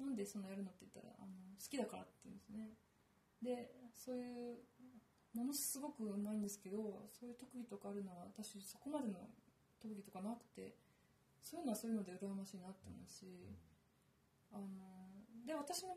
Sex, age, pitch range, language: female, 20-39, 200-240 Hz, Japanese